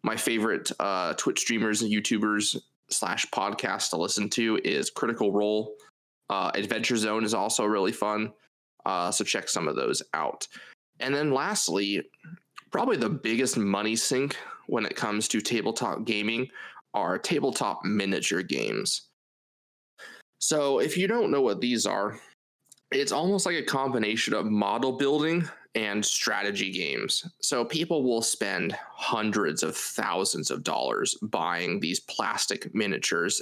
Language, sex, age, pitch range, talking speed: English, male, 20-39, 100-115 Hz, 140 wpm